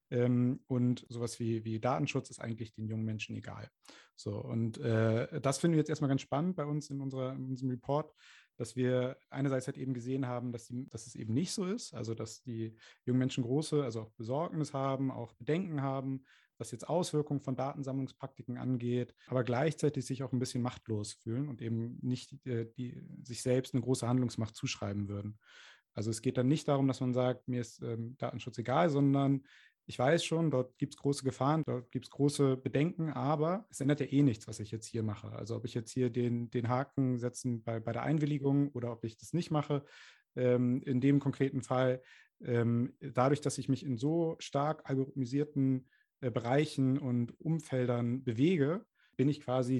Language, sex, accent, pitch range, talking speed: German, male, German, 120-140 Hz, 195 wpm